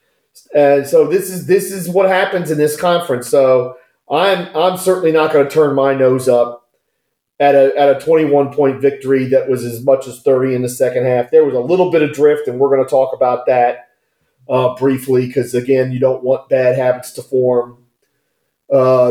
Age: 40-59